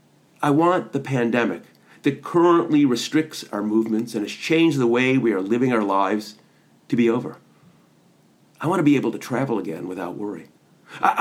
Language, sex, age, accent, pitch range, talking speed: English, male, 40-59, American, 115-150 Hz, 175 wpm